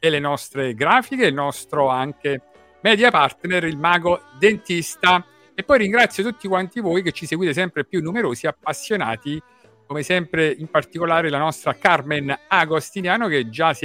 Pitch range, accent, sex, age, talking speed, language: 145-200 Hz, native, male, 50-69, 155 wpm, Italian